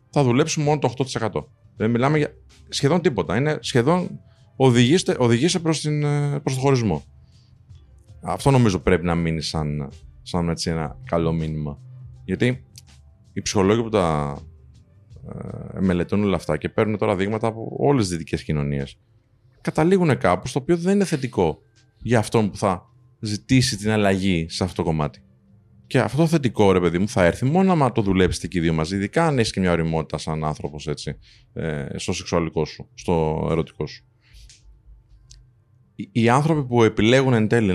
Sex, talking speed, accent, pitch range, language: male, 160 wpm, native, 85-130 Hz, Greek